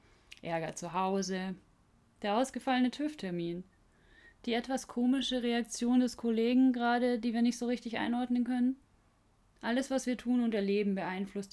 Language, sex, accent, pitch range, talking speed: German, female, German, 175-215 Hz, 140 wpm